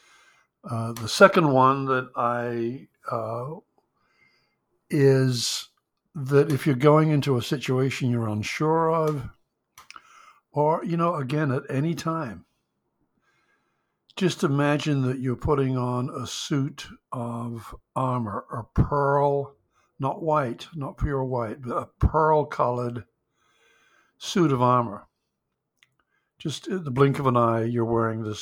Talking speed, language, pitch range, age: 120 wpm, English, 120-155 Hz, 60-79